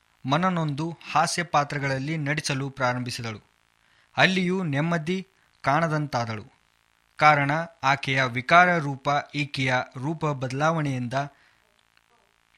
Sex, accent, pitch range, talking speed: male, Indian, 135-165 Hz, 75 wpm